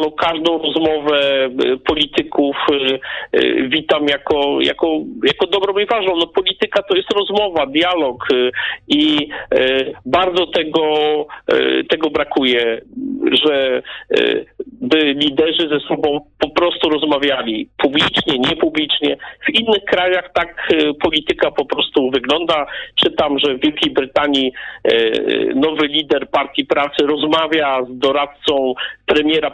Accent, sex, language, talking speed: native, male, Polish, 110 wpm